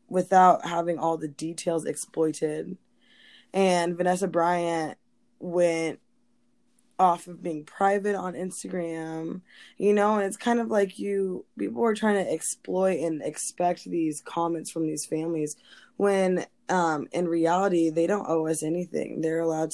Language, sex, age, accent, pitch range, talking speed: English, female, 20-39, American, 160-190 Hz, 145 wpm